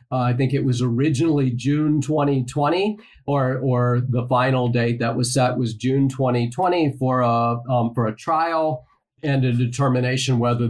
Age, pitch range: 50-69, 125-145 Hz